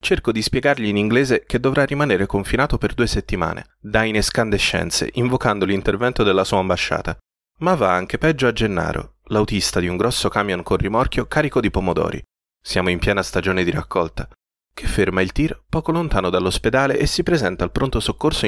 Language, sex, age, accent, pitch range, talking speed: Italian, male, 30-49, native, 95-120 Hz, 180 wpm